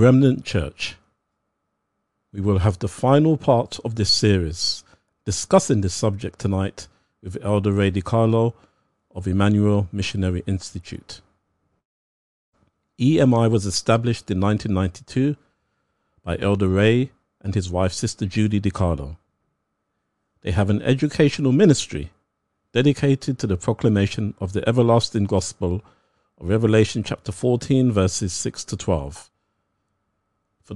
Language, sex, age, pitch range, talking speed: English, male, 50-69, 95-115 Hz, 115 wpm